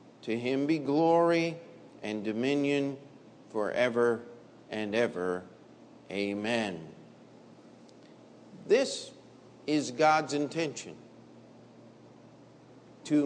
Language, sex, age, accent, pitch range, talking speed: English, male, 50-69, American, 145-190 Hz, 70 wpm